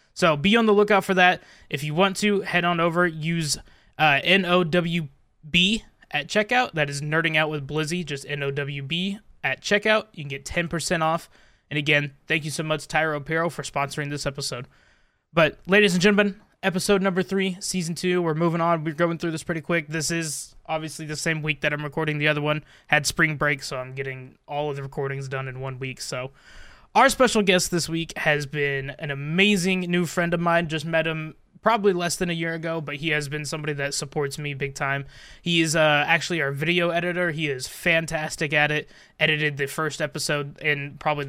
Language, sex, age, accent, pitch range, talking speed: English, male, 20-39, American, 145-175 Hz, 205 wpm